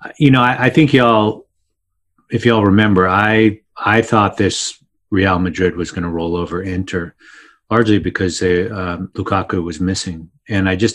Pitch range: 90-115 Hz